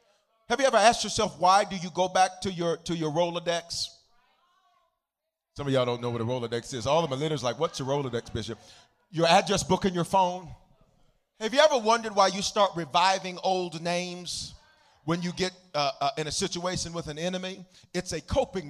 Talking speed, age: 205 wpm, 40-59